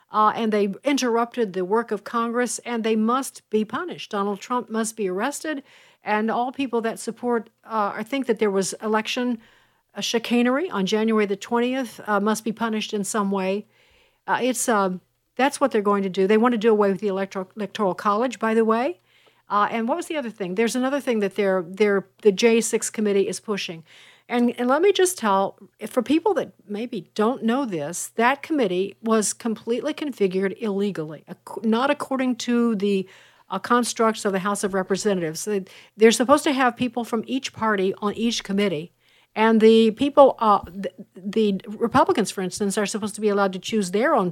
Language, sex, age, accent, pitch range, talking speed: English, female, 50-69, American, 200-245 Hz, 190 wpm